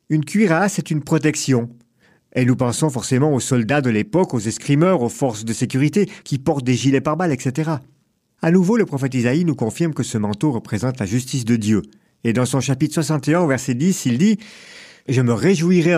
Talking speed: 200 wpm